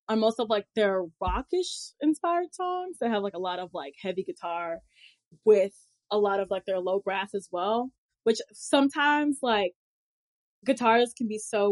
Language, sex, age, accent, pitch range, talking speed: English, female, 10-29, American, 180-235 Hz, 175 wpm